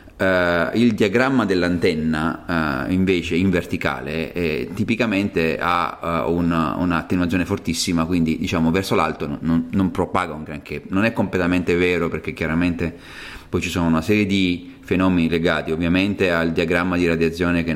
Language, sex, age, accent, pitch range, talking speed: Italian, male, 30-49, native, 80-90 Hz, 150 wpm